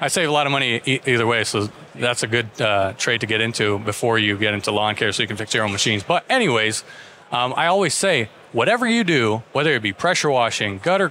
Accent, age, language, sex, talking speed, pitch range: American, 30-49, English, male, 245 wpm, 115-135 Hz